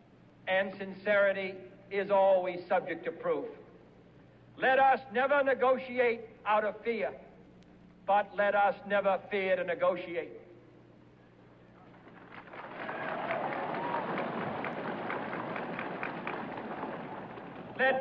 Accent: American